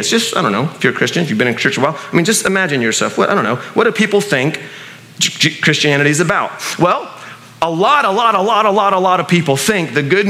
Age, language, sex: 30-49, English, male